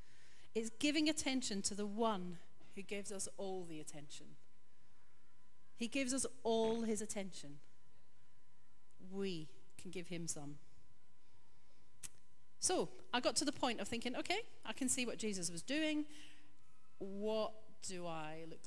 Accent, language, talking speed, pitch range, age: British, English, 140 wpm, 195-270 Hz, 40-59